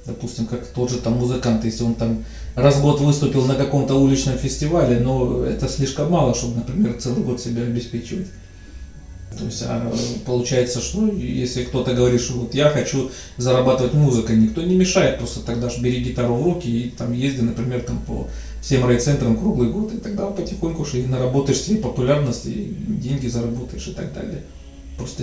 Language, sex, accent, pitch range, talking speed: Russian, male, native, 115-150 Hz, 180 wpm